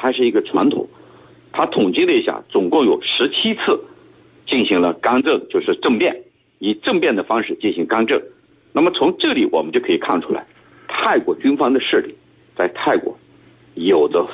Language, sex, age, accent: Chinese, male, 50-69, native